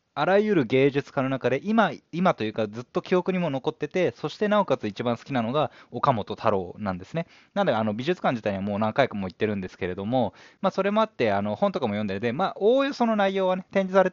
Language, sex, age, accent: Japanese, male, 20-39, native